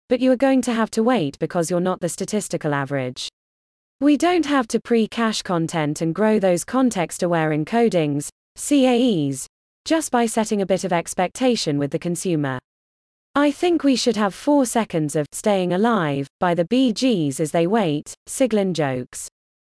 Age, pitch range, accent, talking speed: 20-39, 160-235 Hz, British, 165 wpm